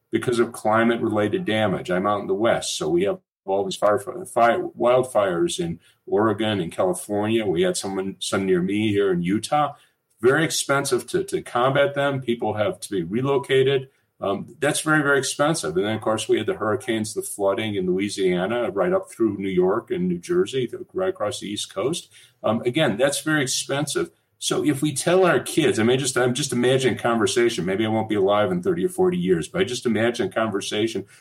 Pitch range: 115-180 Hz